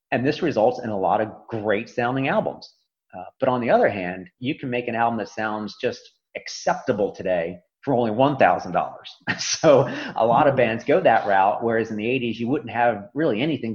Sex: male